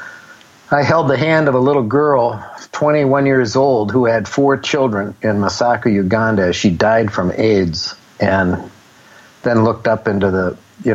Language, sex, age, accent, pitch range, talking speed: English, male, 50-69, American, 95-130 Hz, 160 wpm